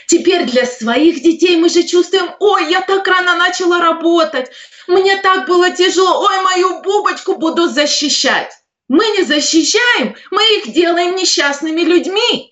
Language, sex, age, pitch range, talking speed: Russian, female, 30-49, 235-335 Hz, 145 wpm